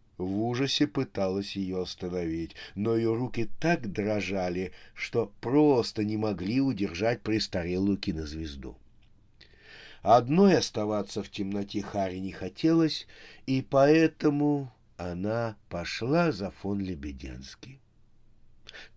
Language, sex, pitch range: Russian, male, 95-125 Hz